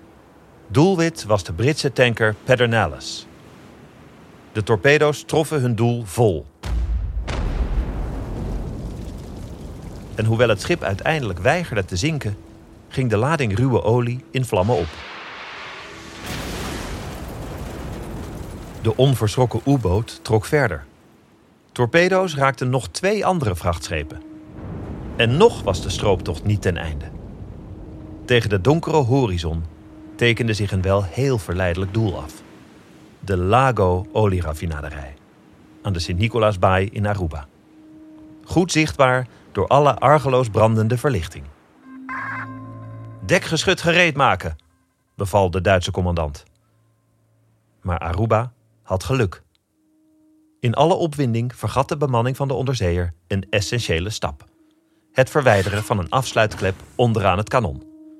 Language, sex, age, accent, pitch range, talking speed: Dutch, male, 40-59, Dutch, 95-135 Hz, 110 wpm